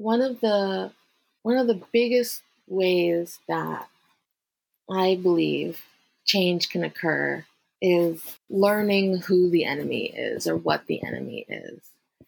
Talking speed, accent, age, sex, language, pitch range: 120 wpm, American, 20-39, female, English, 165-200 Hz